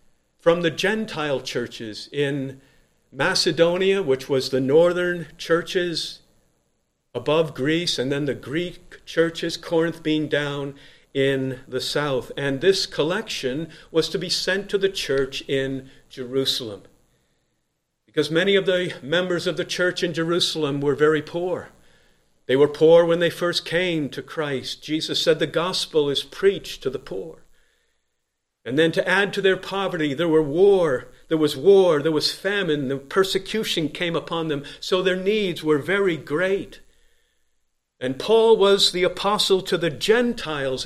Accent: American